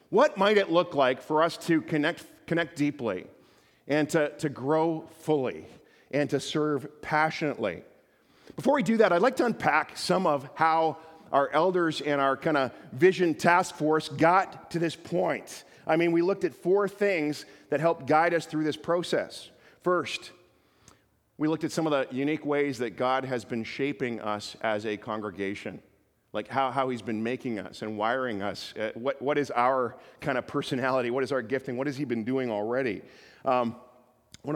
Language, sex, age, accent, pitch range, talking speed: English, male, 40-59, American, 135-180 Hz, 185 wpm